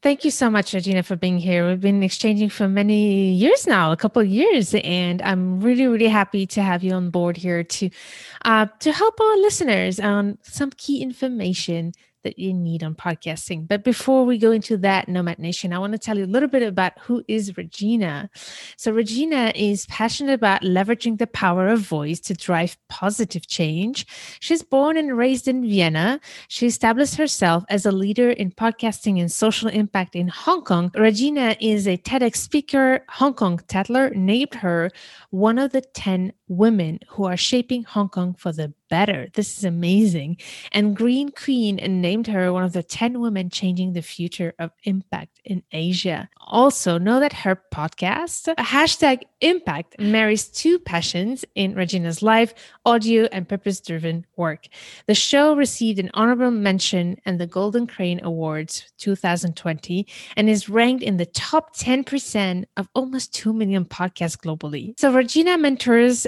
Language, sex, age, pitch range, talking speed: English, female, 30-49, 180-240 Hz, 170 wpm